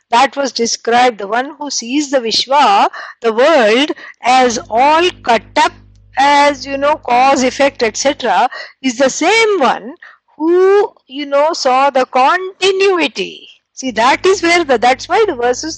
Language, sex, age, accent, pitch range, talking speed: English, female, 60-79, Indian, 240-330 Hz, 150 wpm